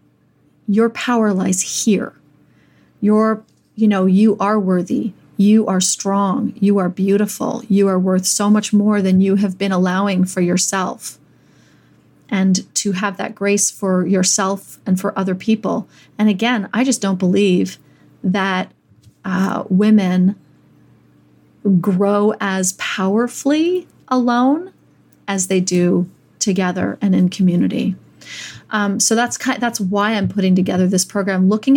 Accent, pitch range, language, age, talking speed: American, 190-215 Hz, English, 30-49, 135 wpm